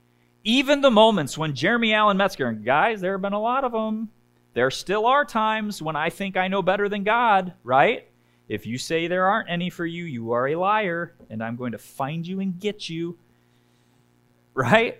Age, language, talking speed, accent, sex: 30-49, English, 205 wpm, American, male